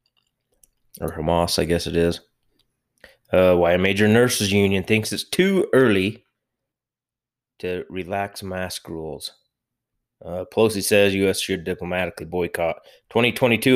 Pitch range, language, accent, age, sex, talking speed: 95-125 Hz, English, American, 20-39, male, 120 wpm